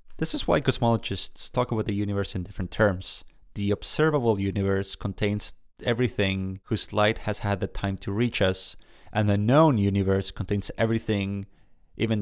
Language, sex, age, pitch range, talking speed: English, male, 30-49, 95-115 Hz, 155 wpm